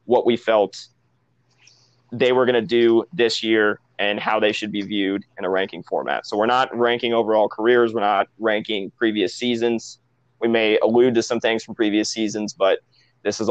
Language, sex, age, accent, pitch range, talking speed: English, male, 20-39, American, 110-125 Hz, 190 wpm